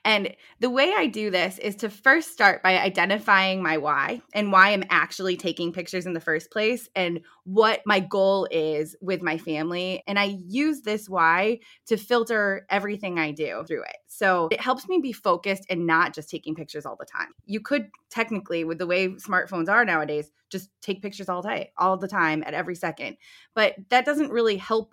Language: English